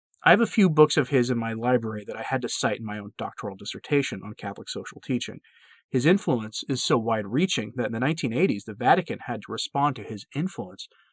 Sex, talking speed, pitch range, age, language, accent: male, 220 wpm, 110-140 Hz, 30-49, English, American